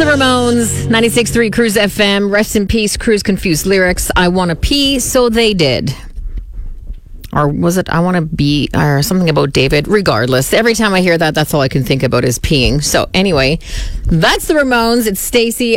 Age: 40-59